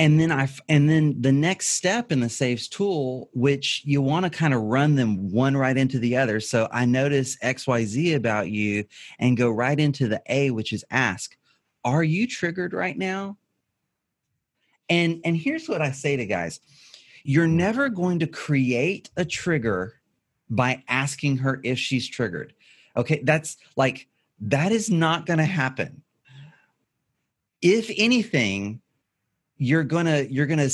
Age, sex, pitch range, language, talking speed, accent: 30-49, male, 130-170 Hz, English, 160 wpm, American